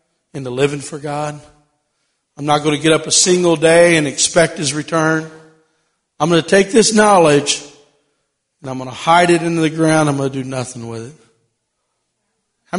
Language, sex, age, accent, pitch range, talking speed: English, male, 50-69, American, 155-240 Hz, 190 wpm